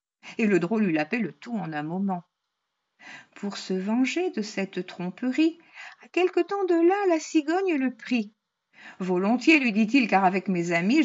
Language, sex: French, female